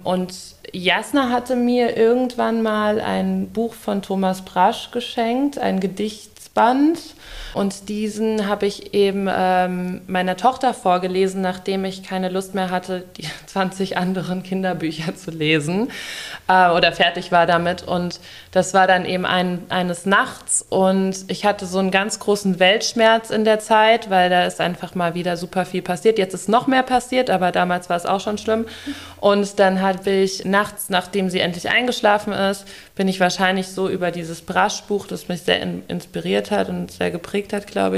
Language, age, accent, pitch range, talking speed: German, 20-39, German, 180-210 Hz, 170 wpm